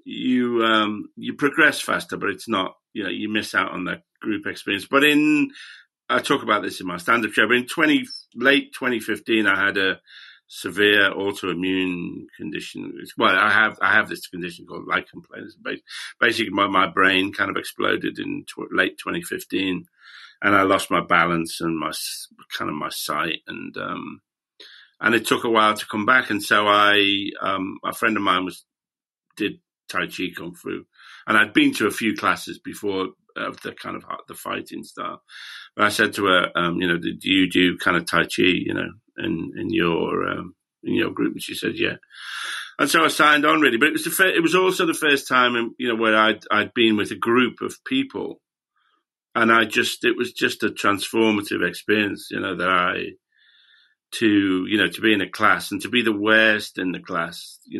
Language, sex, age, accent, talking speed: English, male, 50-69, British, 210 wpm